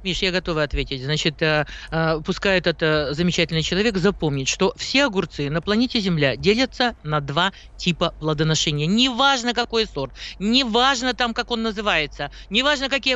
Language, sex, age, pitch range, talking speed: Russian, male, 50-69, 195-260 Hz, 155 wpm